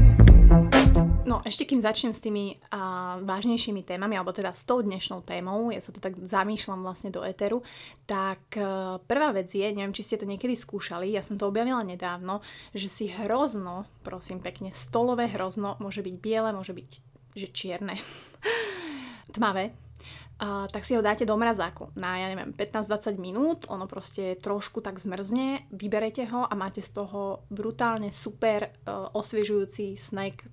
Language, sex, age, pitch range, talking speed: Slovak, female, 30-49, 195-220 Hz, 160 wpm